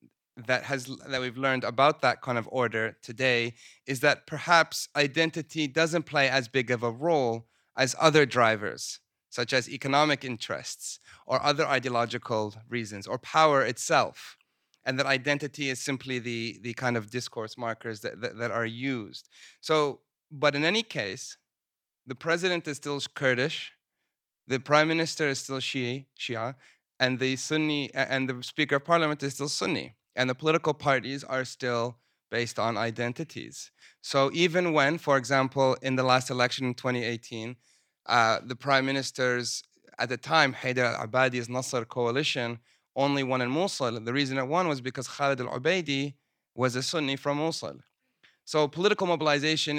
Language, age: English, 30-49